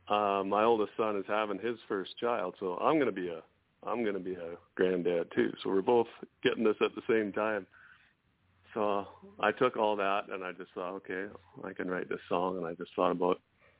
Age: 40-59